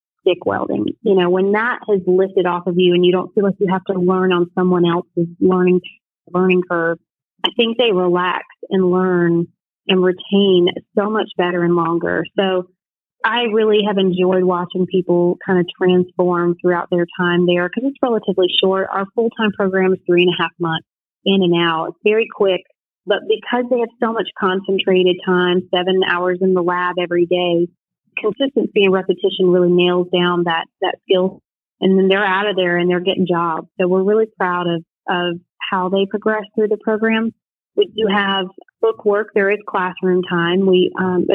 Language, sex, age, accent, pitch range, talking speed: English, female, 30-49, American, 175-200 Hz, 185 wpm